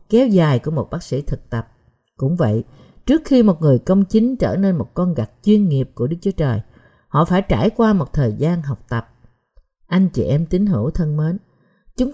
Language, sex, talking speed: Vietnamese, female, 215 wpm